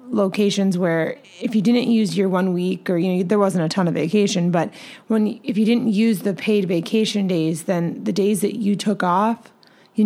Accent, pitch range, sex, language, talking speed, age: American, 185-220 Hz, female, English, 215 wpm, 20-39